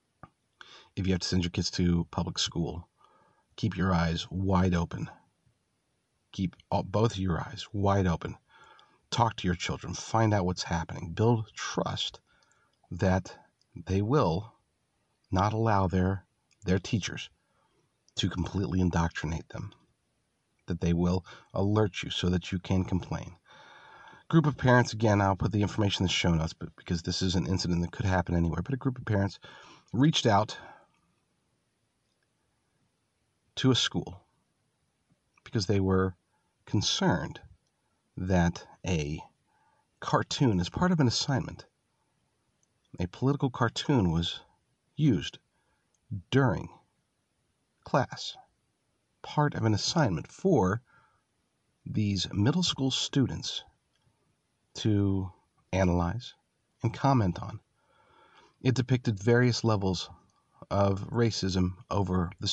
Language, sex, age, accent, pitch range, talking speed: English, male, 40-59, American, 90-115 Hz, 120 wpm